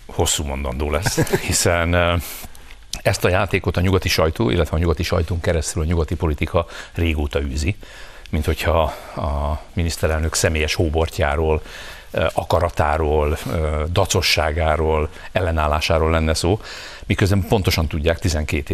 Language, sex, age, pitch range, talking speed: Hungarian, male, 60-79, 75-90 Hz, 110 wpm